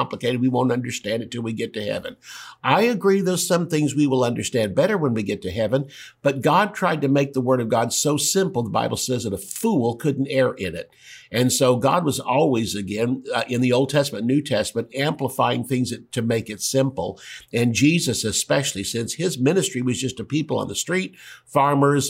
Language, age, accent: English, 60-79, American